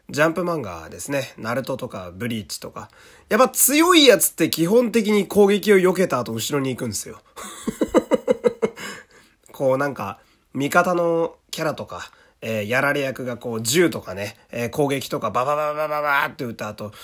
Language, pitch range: Japanese, 110-170 Hz